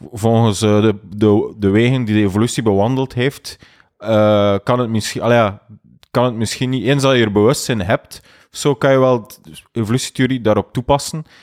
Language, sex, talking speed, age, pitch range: Dutch, male, 175 wpm, 20-39, 110-130 Hz